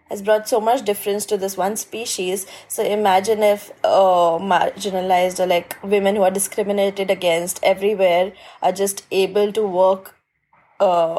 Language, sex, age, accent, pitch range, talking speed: English, female, 20-39, Indian, 170-200 Hz, 150 wpm